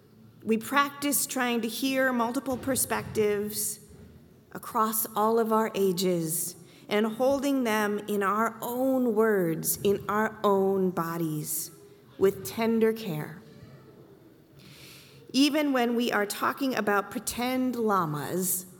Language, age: English, 30-49